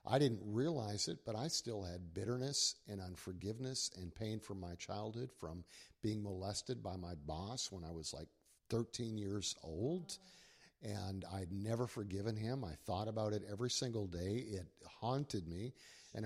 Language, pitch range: English, 95-115 Hz